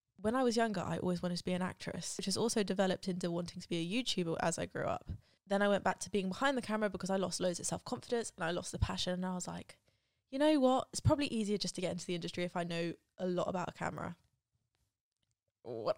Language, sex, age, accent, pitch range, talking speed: English, female, 10-29, British, 180-215 Hz, 265 wpm